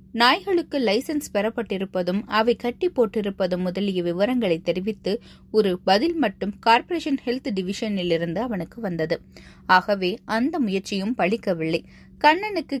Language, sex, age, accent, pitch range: Tamil, female, 20-39, native, 190-255 Hz